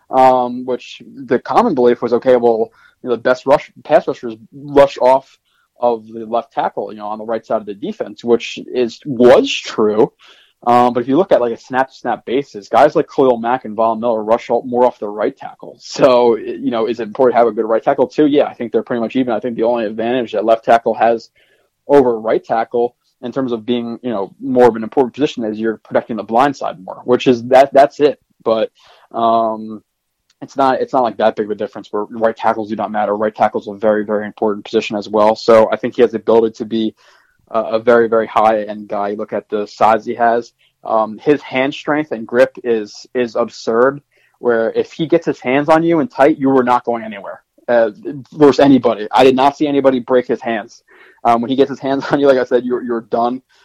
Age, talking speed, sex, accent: 20-39, 235 wpm, male, American